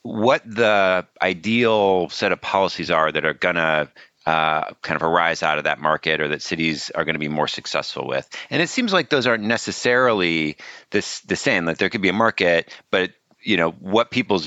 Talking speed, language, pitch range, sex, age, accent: 200 wpm, English, 85-120 Hz, male, 30-49, American